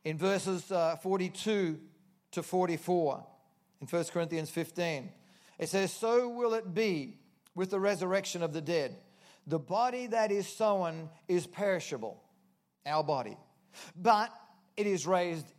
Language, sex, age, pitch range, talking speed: English, male, 40-59, 165-200 Hz, 135 wpm